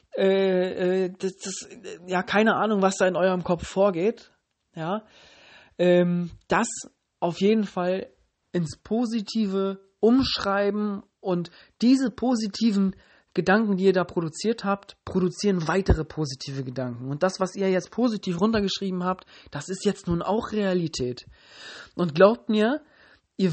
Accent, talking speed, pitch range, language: German, 130 wpm, 175-215 Hz, German